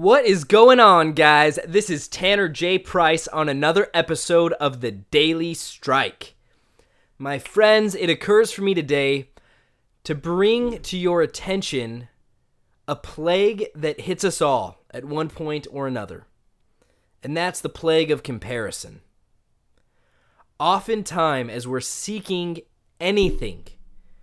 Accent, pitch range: American, 135-185 Hz